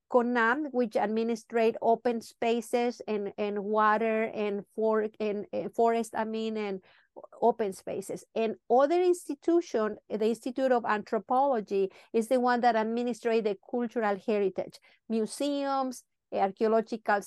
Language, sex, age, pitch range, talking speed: English, female, 50-69, 215-255 Hz, 120 wpm